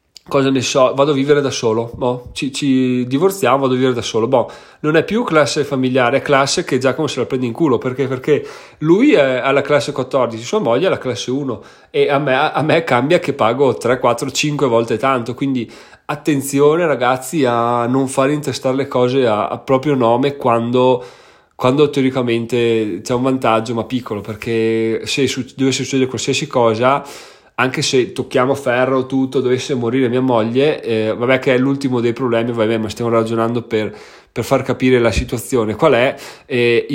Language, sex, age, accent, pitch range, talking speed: Italian, male, 30-49, native, 115-135 Hz, 190 wpm